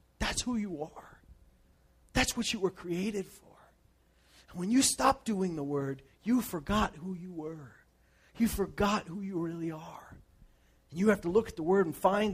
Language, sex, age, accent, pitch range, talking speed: English, male, 30-49, American, 180-255 Hz, 185 wpm